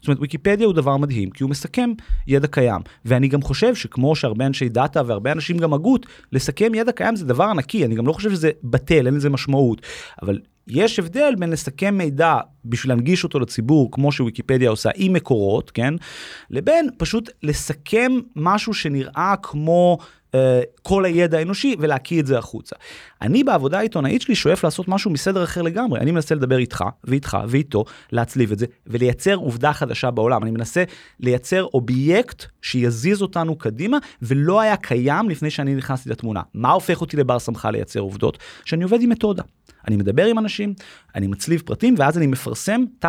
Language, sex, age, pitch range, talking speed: Hebrew, male, 30-49, 130-190 Hz, 175 wpm